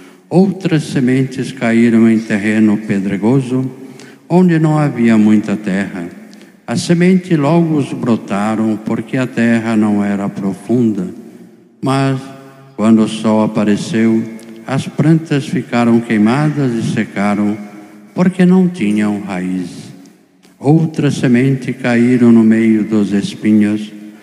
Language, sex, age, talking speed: Portuguese, male, 50-69, 110 wpm